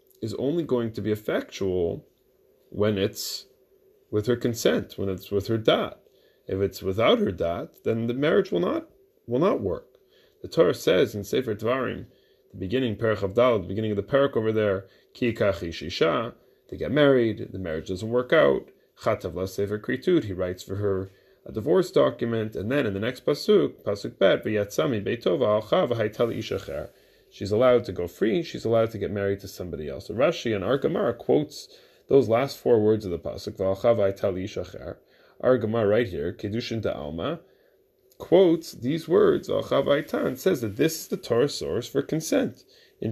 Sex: male